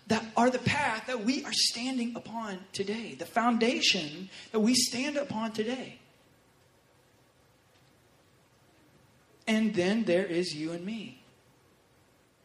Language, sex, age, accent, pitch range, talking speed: English, male, 30-49, American, 145-200 Hz, 115 wpm